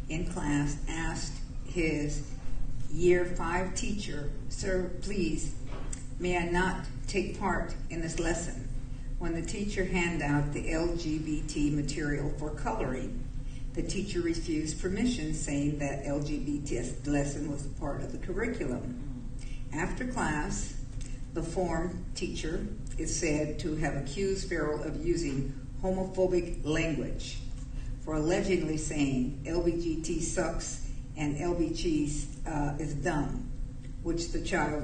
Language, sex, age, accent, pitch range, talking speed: English, female, 50-69, American, 130-165 Hz, 120 wpm